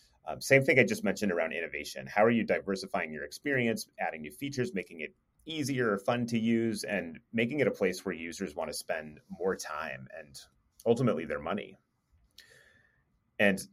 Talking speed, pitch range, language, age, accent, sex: 175 wpm, 90-130 Hz, English, 30-49, American, male